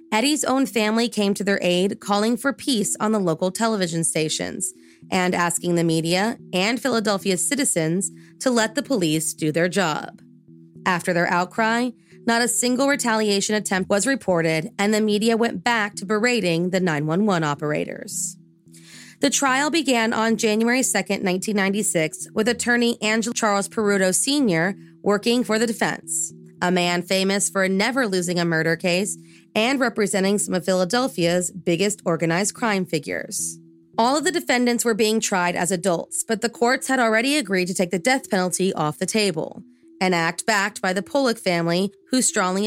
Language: English